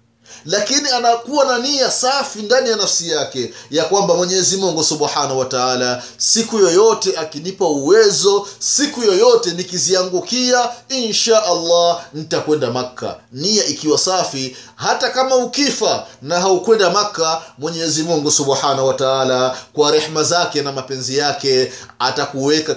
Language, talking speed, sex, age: Swahili, 125 wpm, male, 30-49